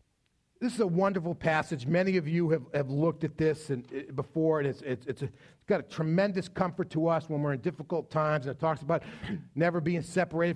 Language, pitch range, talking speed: English, 140-200 Hz, 215 wpm